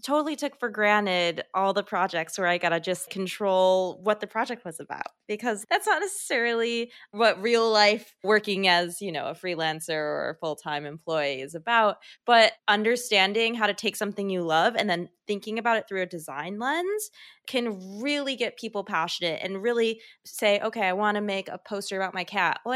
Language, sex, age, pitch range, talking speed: English, female, 20-39, 185-235 Hz, 190 wpm